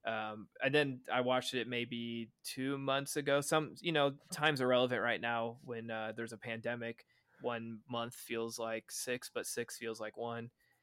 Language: English